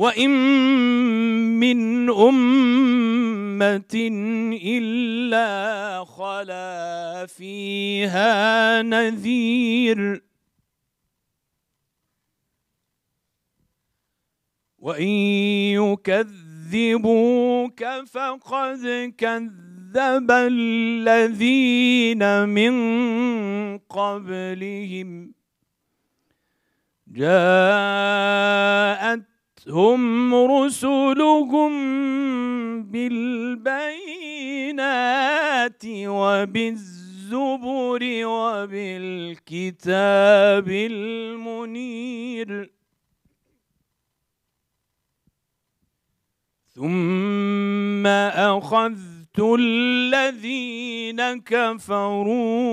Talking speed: 35 wpm